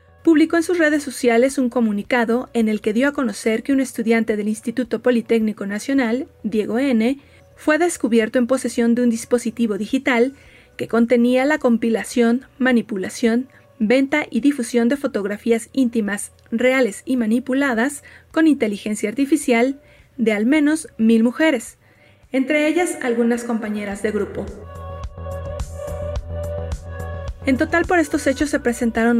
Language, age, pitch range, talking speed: Spanish, 30-49, 225-270 Hz, 135 wpm